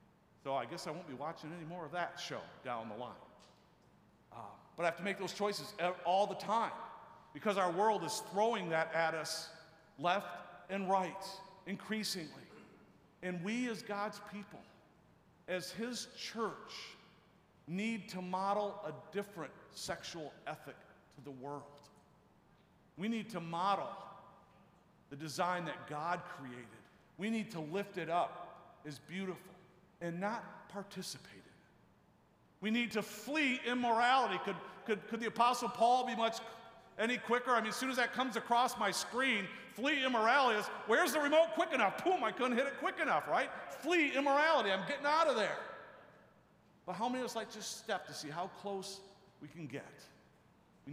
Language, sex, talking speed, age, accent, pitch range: English, male, 165 wpm, 50-69, American, 175-225 Hz